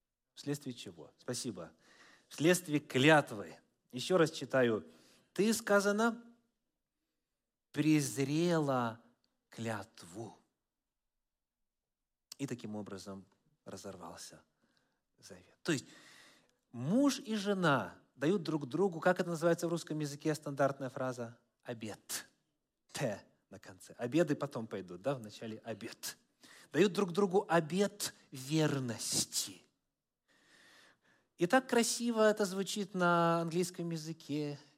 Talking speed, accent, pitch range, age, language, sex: 95 wpm, native, 125-185 Hz, 30-49, Russian, male